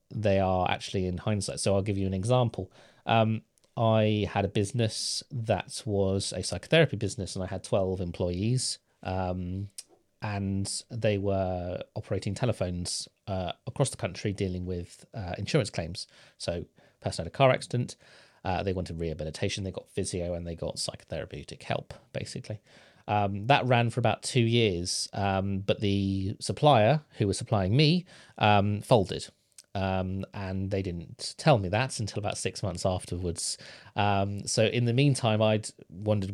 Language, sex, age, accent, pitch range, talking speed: English, male, 30-49, British, 95-115 Hz, 160 wpm